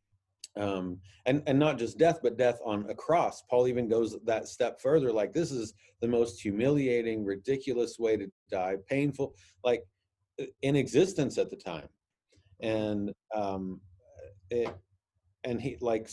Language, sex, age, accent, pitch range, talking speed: English, male, 30-49, American, 100-125 Hz, 150 wpm